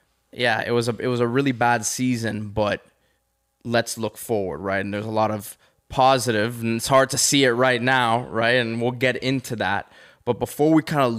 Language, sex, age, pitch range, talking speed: English, male, 20-39, 105-120 Hz, 215 wpm